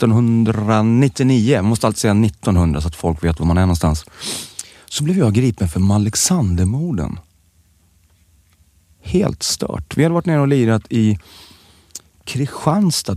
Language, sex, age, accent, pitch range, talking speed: English, male, 30-49, Swedish, 85-130 Hz, 135 wpm